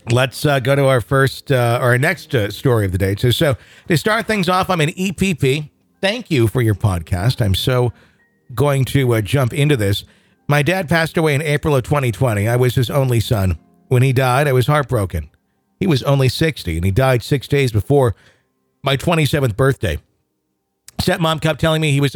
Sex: male